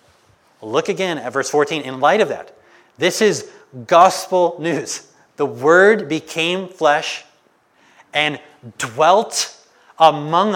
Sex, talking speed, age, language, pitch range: male, 115 wpm, 30-49, English, 150-195 Hz